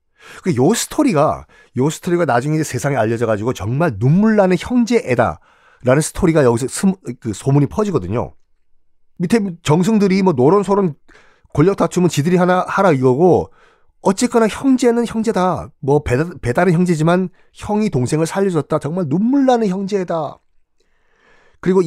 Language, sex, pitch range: Korean, male, 120-200 Hz